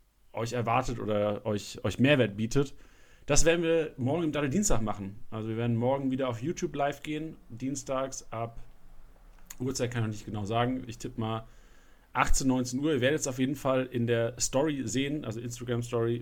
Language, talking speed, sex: German, 185 wpm, male